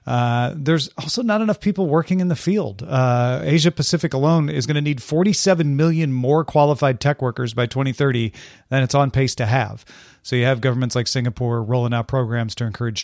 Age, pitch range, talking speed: 40-59, 125-160 Hz, 200 wpm